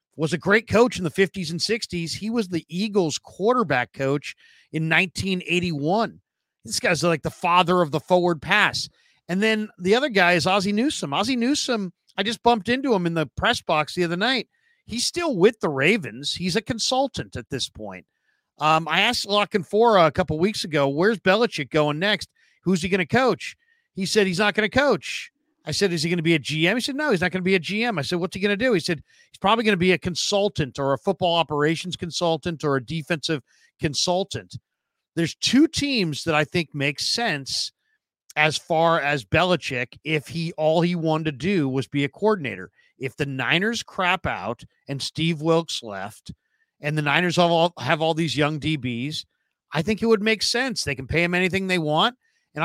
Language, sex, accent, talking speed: English, male, American, 210 wpm